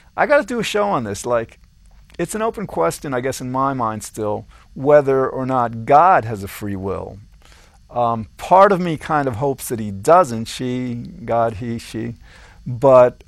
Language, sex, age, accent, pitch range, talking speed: English, male, 50-69, American, 115-150 Hz, 190 wpm